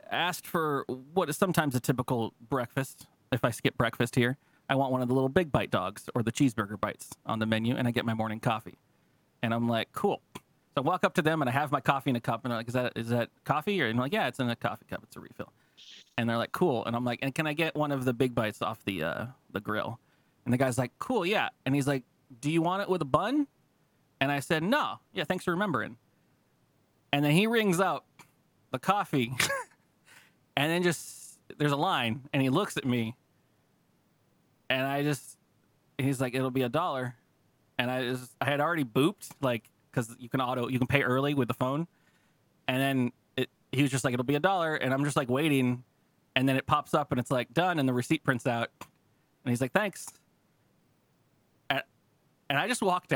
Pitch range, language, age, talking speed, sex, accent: 125-160 Hz, English, 30-49, 230 wpm, male, American